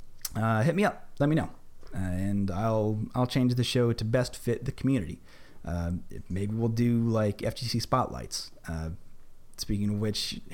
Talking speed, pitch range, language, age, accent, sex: 170 wpm, 100-125 Hz, English, 30-49, American, male